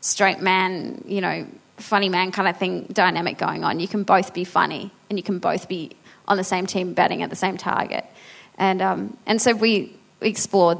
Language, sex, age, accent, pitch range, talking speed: English, female, 20-39, Australian, 185-230 Hz, 205 wpm